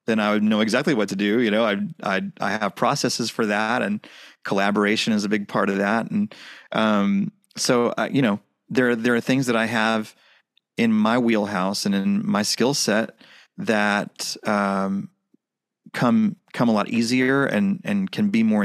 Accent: American